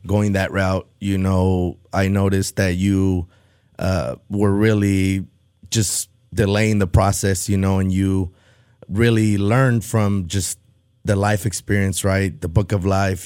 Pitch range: 95-105 Hz